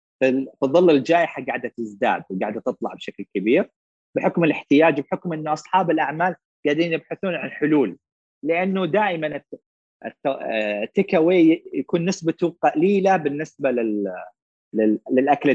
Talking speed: 105 wpm